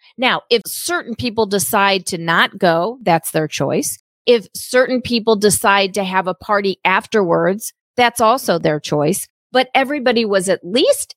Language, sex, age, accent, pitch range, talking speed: English, female, 40-59, American, 185-230 Hz, 155 wpm